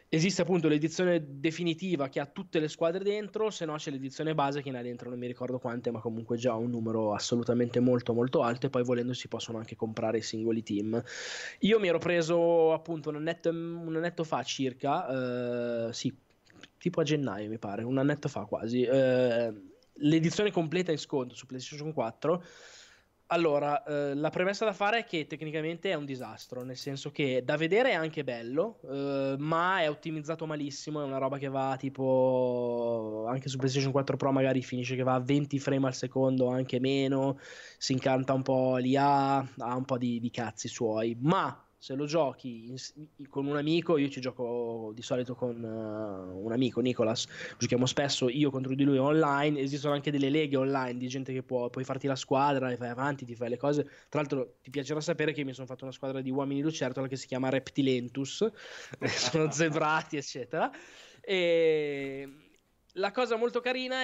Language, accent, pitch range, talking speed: Italian, native, 125-155 Hz, 190 wpm